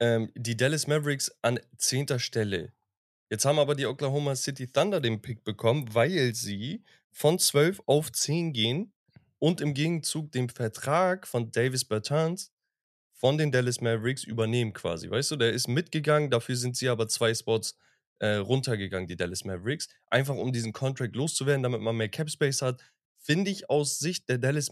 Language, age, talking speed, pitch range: German, 20-39, 165 wpm, 115-145 Hz